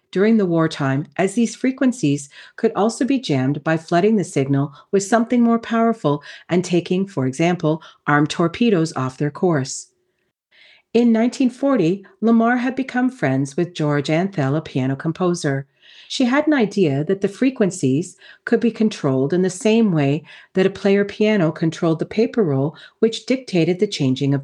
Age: 40-59